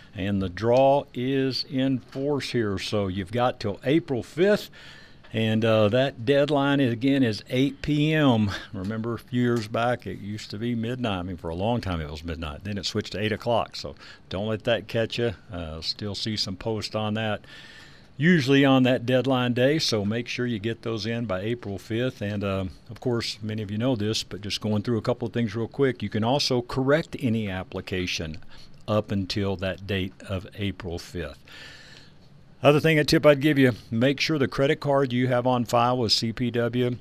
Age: 60-79